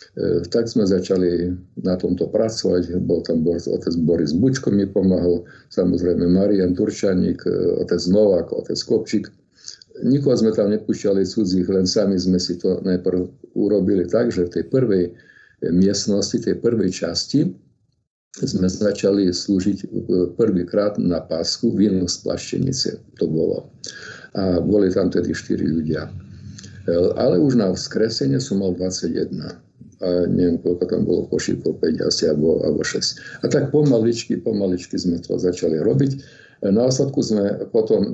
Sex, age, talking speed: male, 50-69, 140 wpm